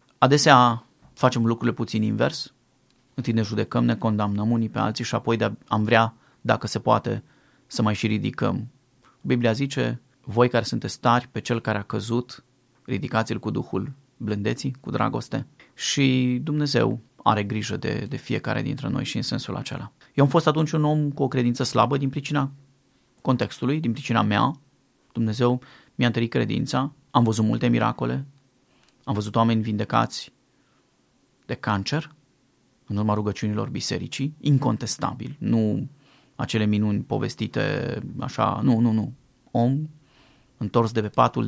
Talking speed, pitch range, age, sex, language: 150 wpm, 110-130 Hz, 30-49, male, Romanian